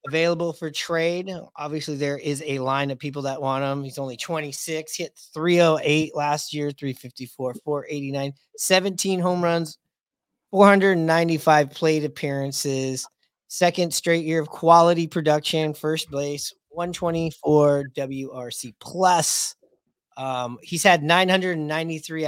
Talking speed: 115 wpm